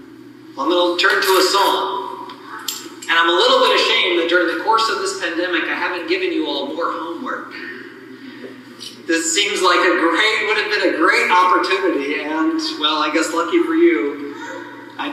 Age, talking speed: 40-59, 185 wpm